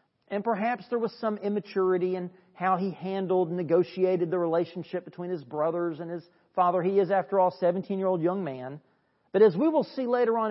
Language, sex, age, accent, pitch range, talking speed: English, male, 40-59, American, 170-220 Hz, 200 wpm